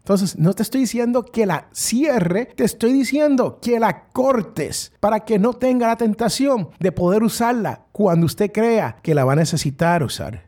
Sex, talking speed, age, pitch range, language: male, 185 wpm, 50-69, 115-195 Hz, Spanish